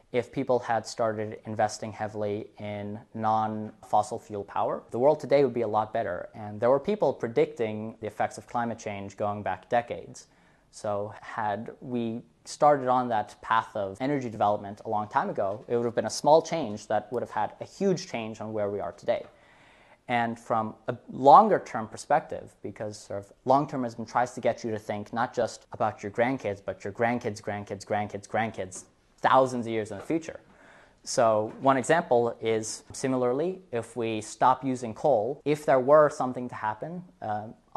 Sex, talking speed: male, 180 wpm